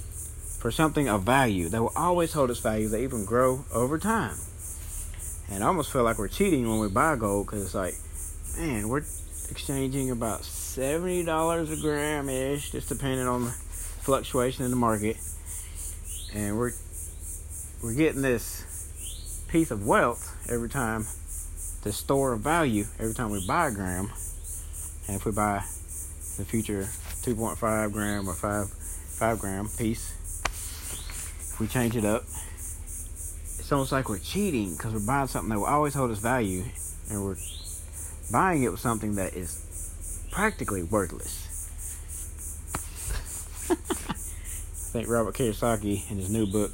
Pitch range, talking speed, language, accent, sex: 80-120 Hz, 150 wpm, English, American, male